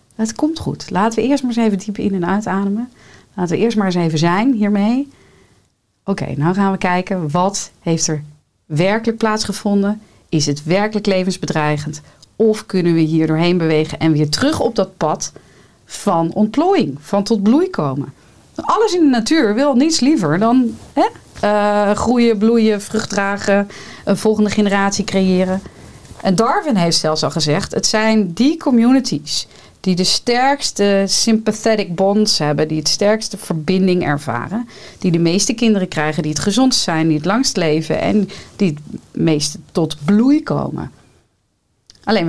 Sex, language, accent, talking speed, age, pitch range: female, Dutch, Dutch, 160 wpm, 40-59, 160-220 Hz